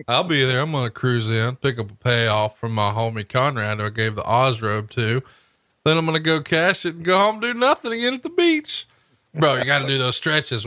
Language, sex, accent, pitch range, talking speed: English, male, American, 115-160 Hz, 260 wpm